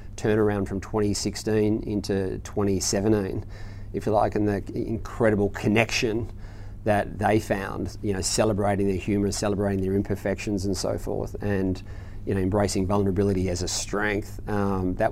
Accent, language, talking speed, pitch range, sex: Australian, English, 130 wpm, 100-110 Hz, male